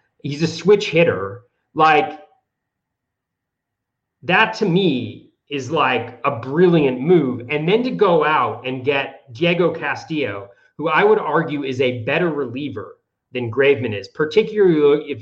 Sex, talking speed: male, 140 wpm